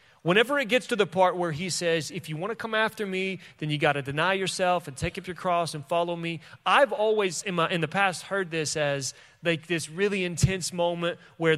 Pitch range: 155-205 Hz